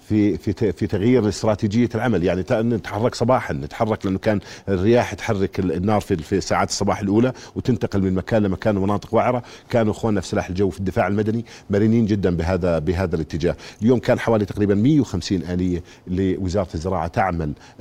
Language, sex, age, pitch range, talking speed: Arabic, male, 50-69, 90-105 Hz, 160 wpm